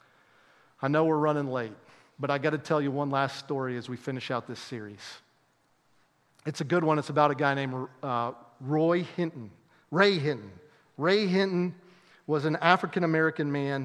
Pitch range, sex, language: 135-175 Hz, male, English